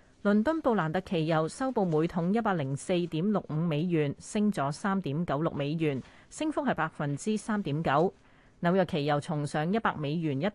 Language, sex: Chinese, female